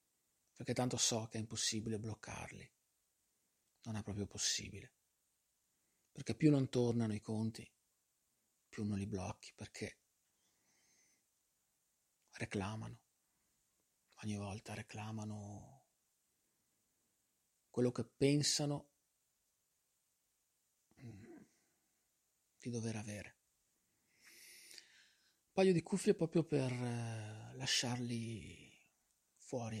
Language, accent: Italian, native